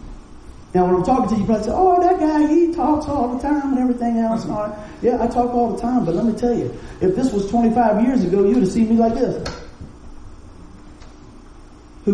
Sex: male